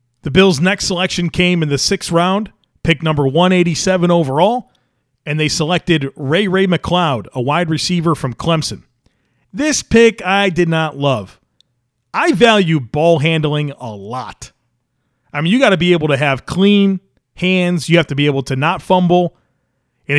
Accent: American